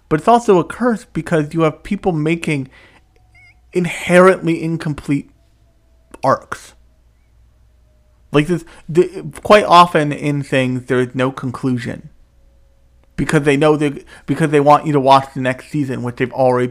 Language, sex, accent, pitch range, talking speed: English, male, American, 115-160 Hz, 145 wpm